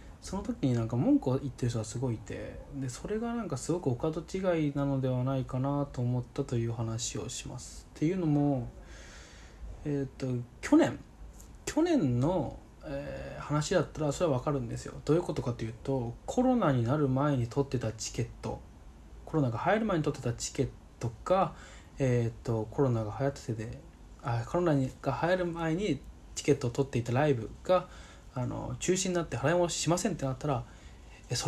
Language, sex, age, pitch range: Japanese, male, 20-39, 120-175 Hz